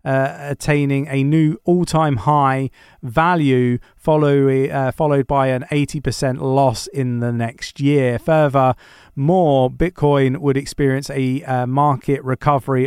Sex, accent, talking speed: male, British, 125 wpm